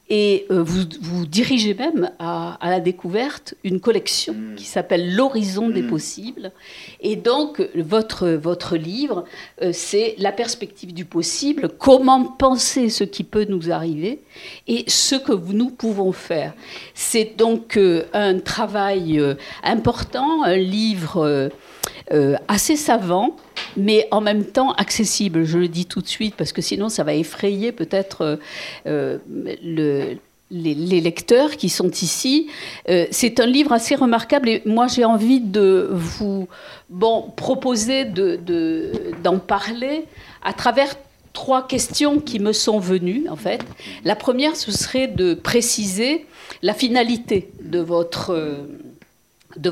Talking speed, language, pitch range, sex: 140 wpm, French, 175-255 Hz, female